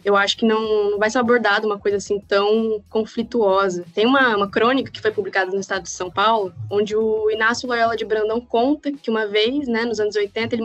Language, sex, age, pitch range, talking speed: Portuguese, female, 10-29, 205-255 Hz, 220 wpm